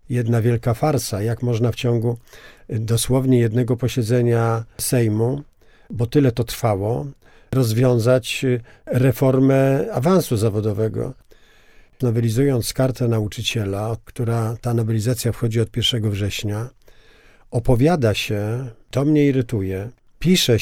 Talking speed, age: 100 wpm, 50-69